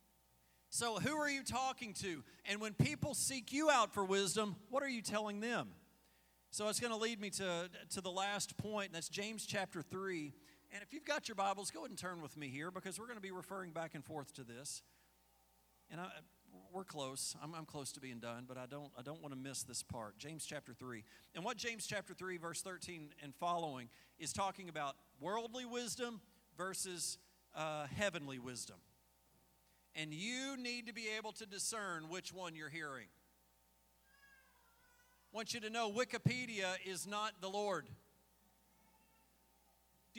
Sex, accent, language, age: male, American, English, 40-59